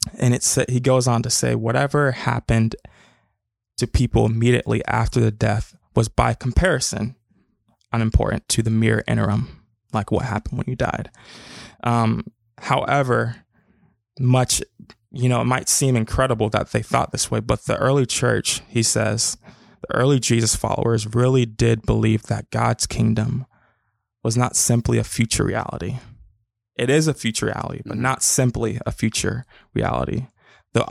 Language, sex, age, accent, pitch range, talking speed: English, male, 20-39, American, 110-125 Hz, 150 wpm